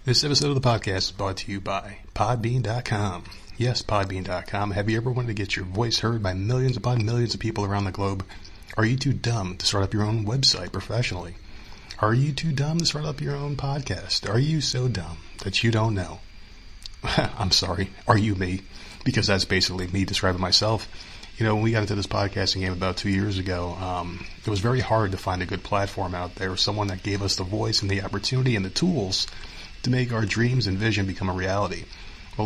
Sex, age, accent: male, 30-49, American